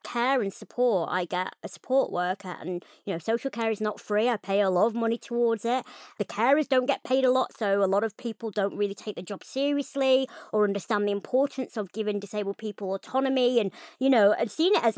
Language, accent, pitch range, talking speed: English, British, 190-235 Hz, 230 wpm